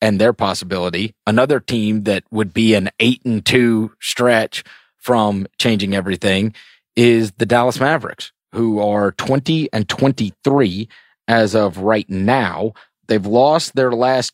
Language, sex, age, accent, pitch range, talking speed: English, male, 30-49, American, 100-130 Hz, 140 wpm